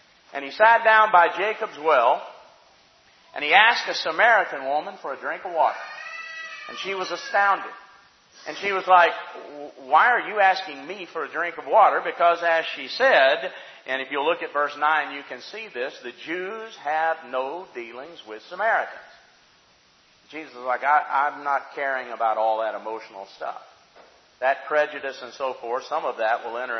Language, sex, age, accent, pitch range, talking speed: English, male, 40-59, American, 150-225 Hz, 180 wpm